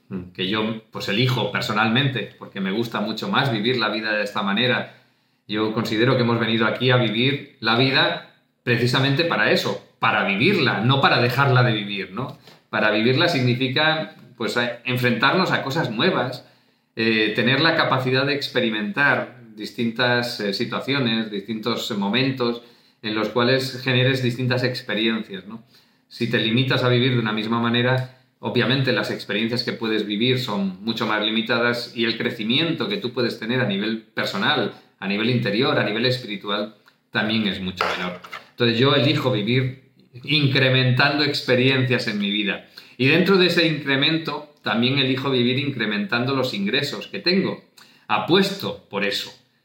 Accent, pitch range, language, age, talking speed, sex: Spanish, 110-130 Hz, Spanish, 40-59, 155 wpm, male